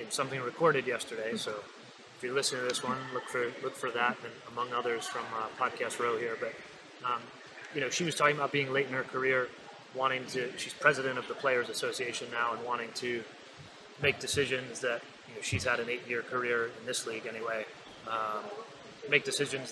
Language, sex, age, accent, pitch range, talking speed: English, male, 30-49, American, 125-145 Hz, 200 wpm